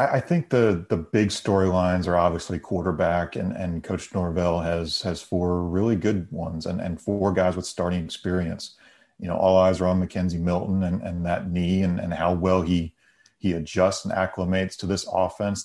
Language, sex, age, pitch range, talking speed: English, male, 30-49, 90-100 Hz, 190 wpm